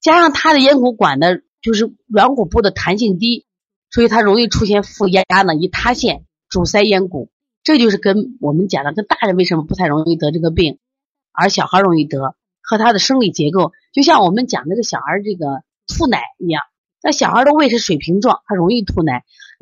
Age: 30-49